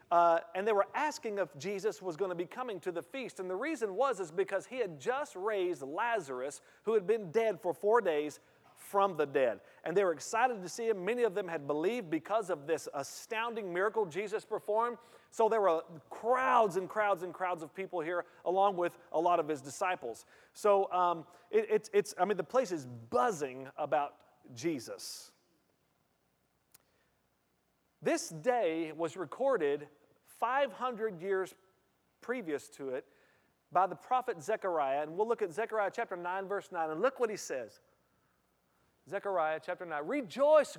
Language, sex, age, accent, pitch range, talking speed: English, male, 40-59, American, 170-250 Hz, 170 wpm